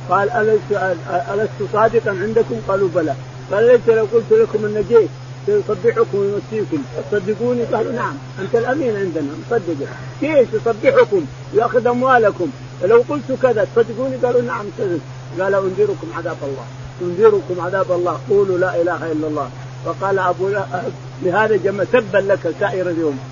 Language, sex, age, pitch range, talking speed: Arabic, male, 50-69, 155-210 Hz, 135 wpm